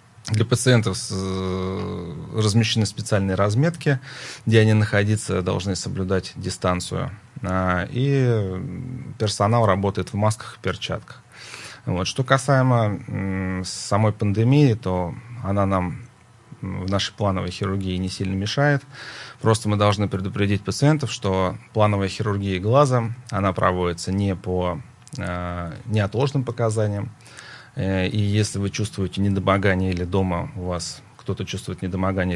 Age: 30-49